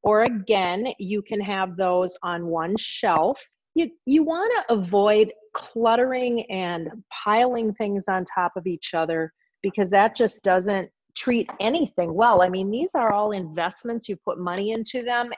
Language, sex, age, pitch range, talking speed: English, female, 30-49, 185-240 Hz, 160 wpm